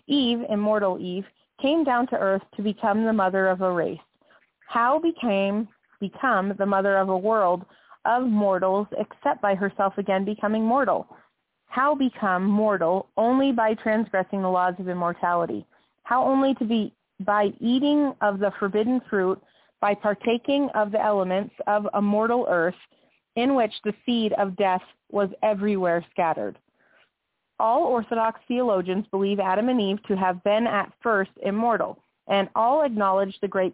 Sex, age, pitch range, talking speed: female, 30-49, 190-225 Hz, 155 wpm